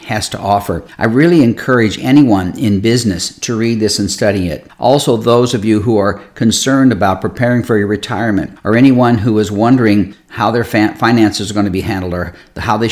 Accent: American